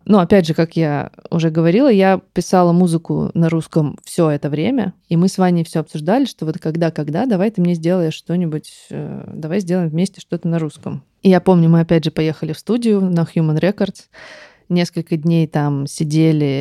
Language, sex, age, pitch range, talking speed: Russian, female, 20-39, 160-200 Hz, 190 wpm